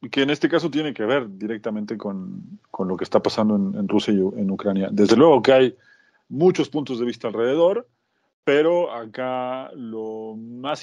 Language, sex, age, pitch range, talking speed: Spanish, male, 40-59, 110-140 Hz, 185 wpm